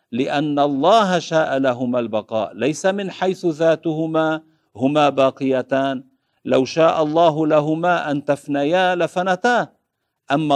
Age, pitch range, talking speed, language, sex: 50-69, 140-180 Hz, 110 wpm, Arabic, male